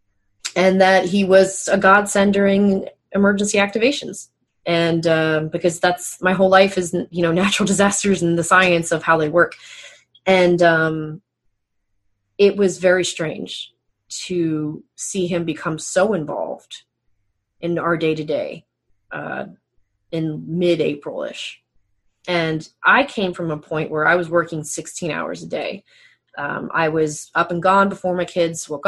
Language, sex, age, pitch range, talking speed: English, female, 20-39, 155-190 Hz, 145 wpm